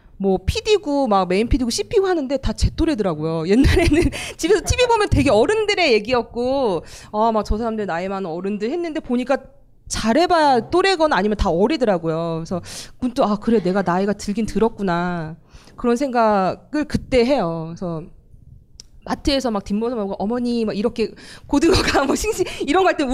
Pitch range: 195-300 Hz